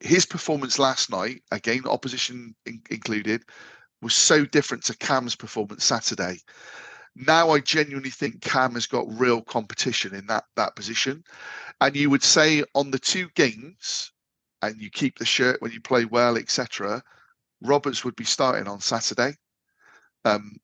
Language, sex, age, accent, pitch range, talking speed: English, male, 40-59, British, 115-140 Hz, 150 wpm